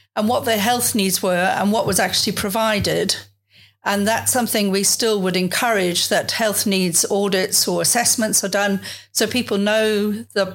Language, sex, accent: English, female, British